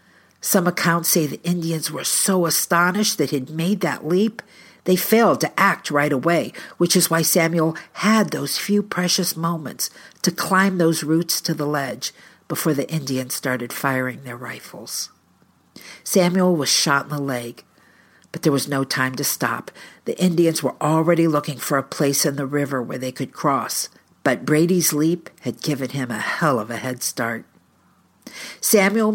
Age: 50-69